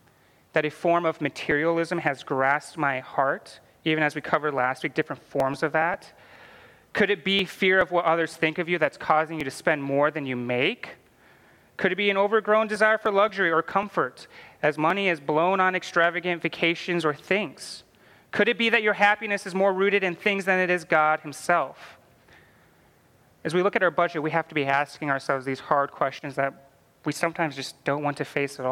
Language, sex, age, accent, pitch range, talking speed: English, male, 30-49, American, 140-185 Hz, 205 wpm